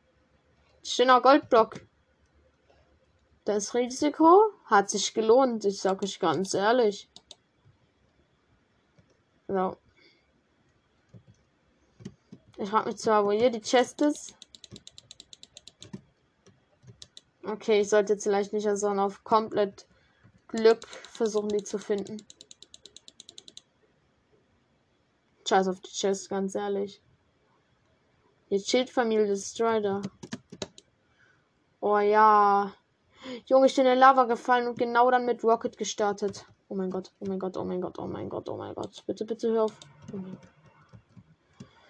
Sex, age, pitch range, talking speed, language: female, 10-29, 185-230 Hz, 115 wpm, German